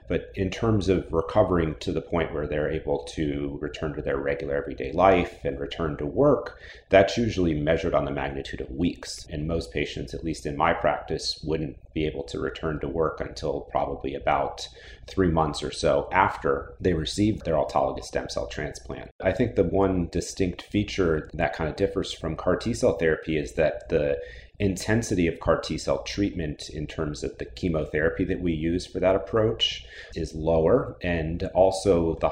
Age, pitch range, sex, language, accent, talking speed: 30-49, 75-95 Hz, male, English, American, 180 wpm